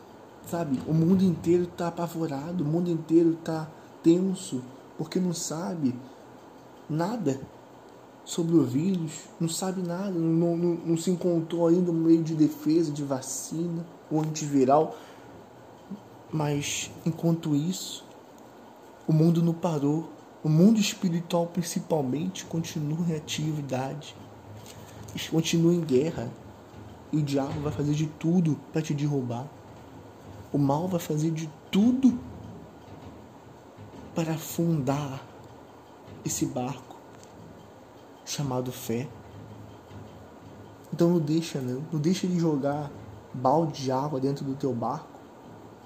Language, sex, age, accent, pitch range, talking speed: Portuguese, male, 20-39, Brazilian, 130-165 Hz, 115 wpm